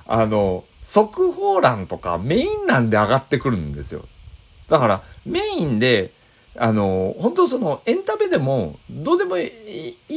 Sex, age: male, 40-59